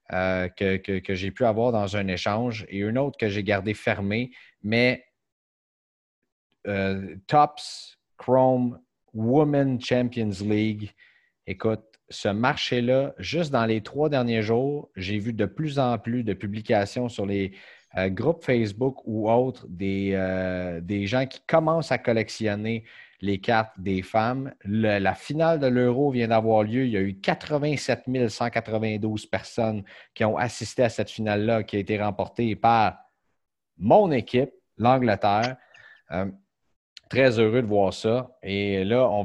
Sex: male